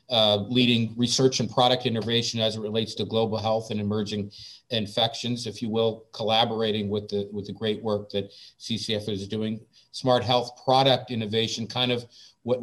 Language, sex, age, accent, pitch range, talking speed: English, male, 50-69, American, 105-120 Hz, 170 wpm